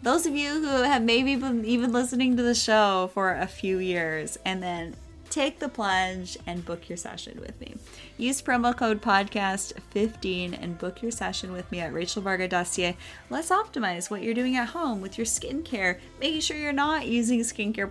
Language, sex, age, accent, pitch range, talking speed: English, female, 20-39, American, 180-245 Hz, 190 wpm